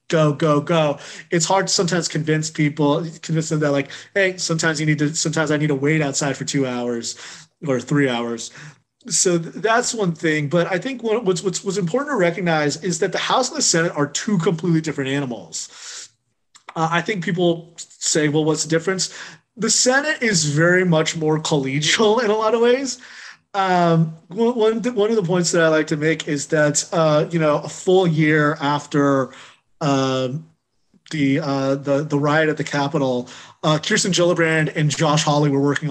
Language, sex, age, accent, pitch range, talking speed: English, male, 30-49, American, 145-180 Hz, 190 wpm